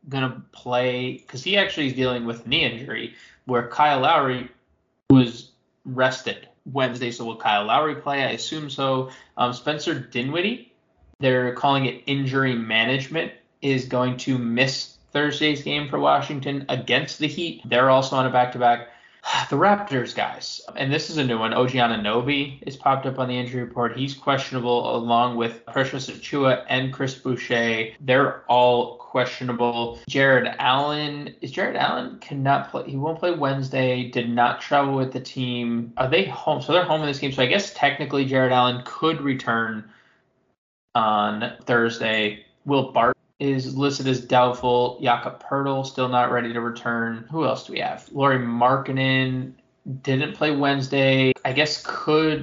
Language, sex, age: English, male, 20-39